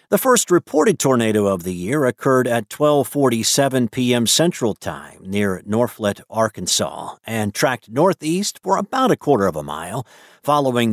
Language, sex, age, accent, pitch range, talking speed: English, male, 50-69, American, 110-140 Hz, 150 wpm